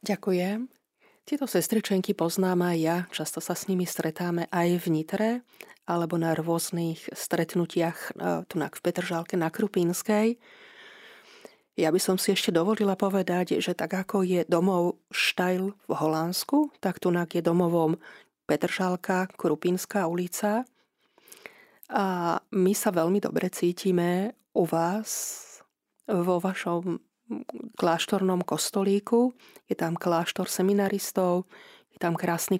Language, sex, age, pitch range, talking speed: Slovak, female, 30-49, 170-200 Hz, 120 wpm